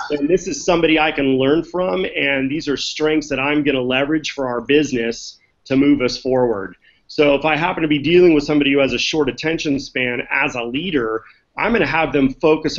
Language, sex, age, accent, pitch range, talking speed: English, male, 30-49, American, 130-155 Hz, 215 wpm